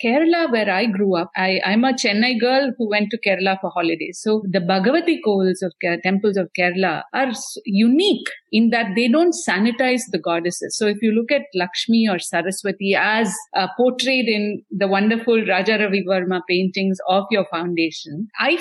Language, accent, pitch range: English, Indian, 190-250 Hz